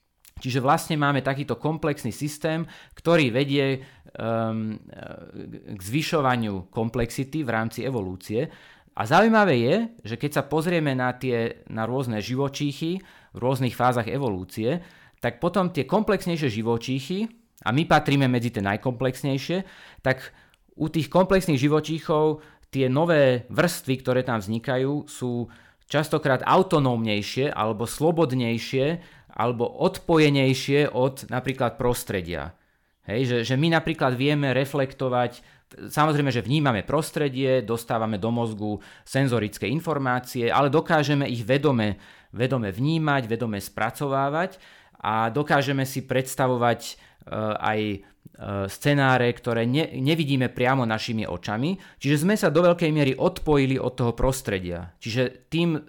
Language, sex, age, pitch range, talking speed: Slovak, male, 30-49, 115-150 Hz, 120 wpm